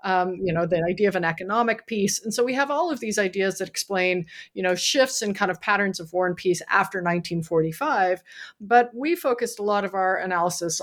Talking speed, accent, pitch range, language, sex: 220 wpm, American, 170-210 Hz, English, female